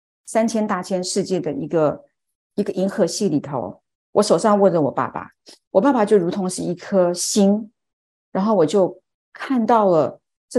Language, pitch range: Chinese, 175-235 Hz